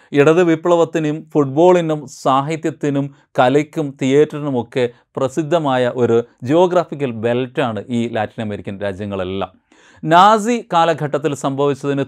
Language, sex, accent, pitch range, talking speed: Malayalam, male, native, 120-165 Hz, 85 wpm